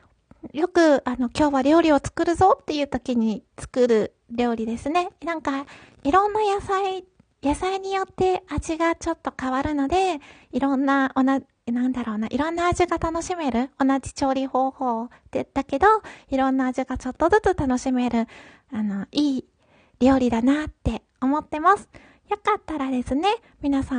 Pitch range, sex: 250-330 Hz, female